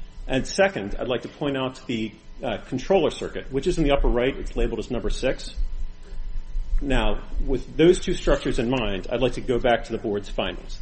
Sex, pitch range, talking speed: male, 110-155 Hz, 210 wpm